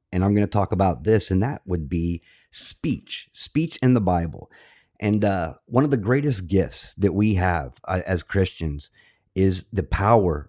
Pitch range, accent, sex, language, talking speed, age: 90-110 Hz, American, male, English, 185 wpm, 30-49